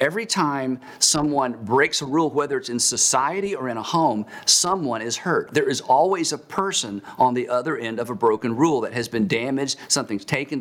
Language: English